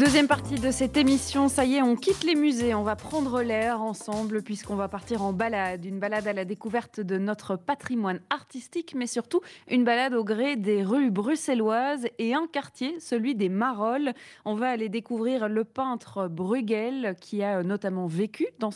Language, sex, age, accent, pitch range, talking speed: French, female, 20-39, French, 200-255 Hz, 185 wpm